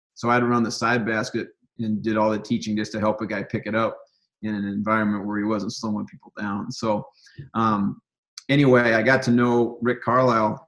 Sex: male